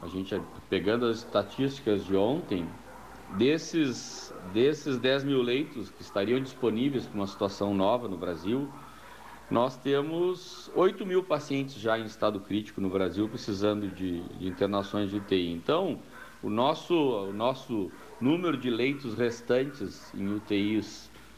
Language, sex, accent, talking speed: Portuguese, male, Brazilian, 135 wpm